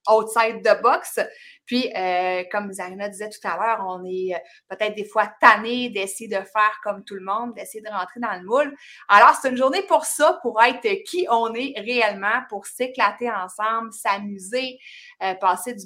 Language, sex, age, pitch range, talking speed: French, female, 30-49, 200-255 Hz, 185 wpm